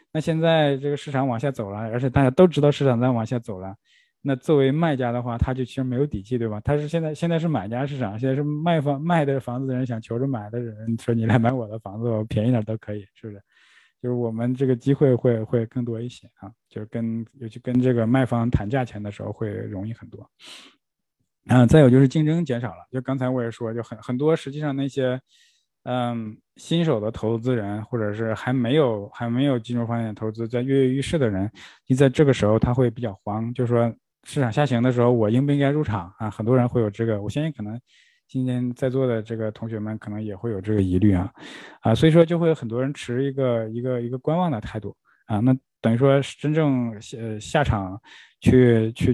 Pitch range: 110-135 Hz